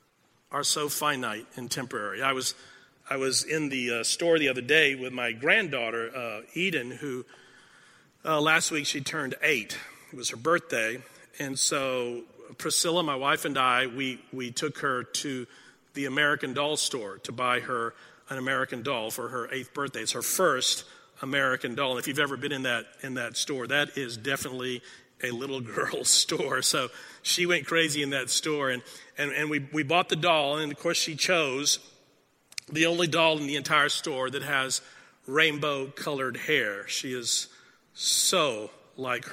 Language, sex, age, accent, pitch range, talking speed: English, male, 50-69, American, 130-160 Hz, 175 wpm